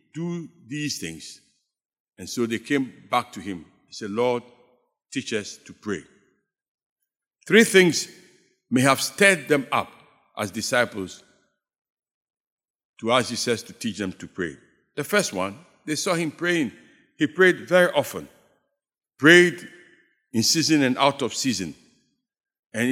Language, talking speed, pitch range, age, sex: English, 140 wpm, 125-205 Hz, 60-79, male